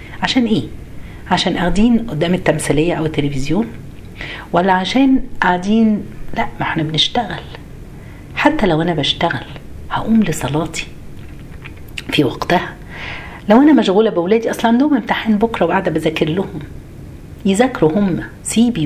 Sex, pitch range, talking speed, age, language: female, 155-230 Hz, 120 wpm, 50-69, Arabic